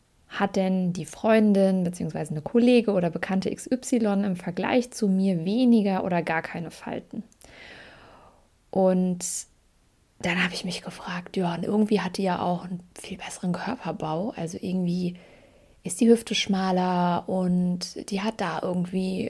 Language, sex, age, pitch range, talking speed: German, female, 20-39, 175-210 Hz, 145 wpm